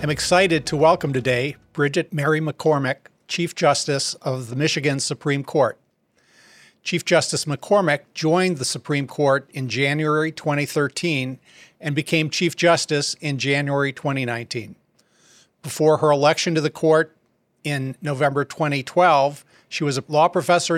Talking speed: 135 wpm